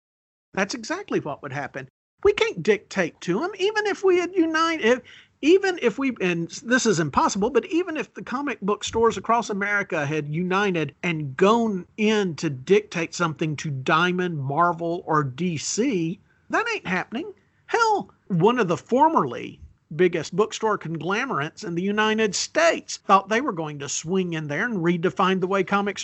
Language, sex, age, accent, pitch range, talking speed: English, male, 50-69, American, 165-230 Hz, 165 wpm